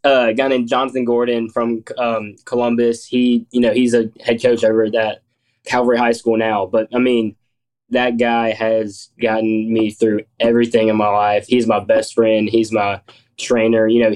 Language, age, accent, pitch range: English, 10-29, American, 110-120 Hz